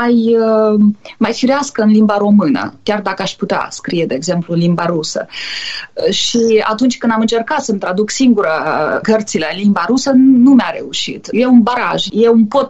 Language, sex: Romanian, female